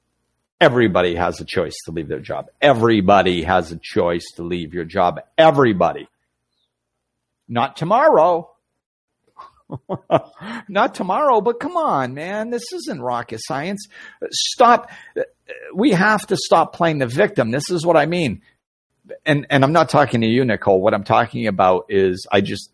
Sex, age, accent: male, 50-69, American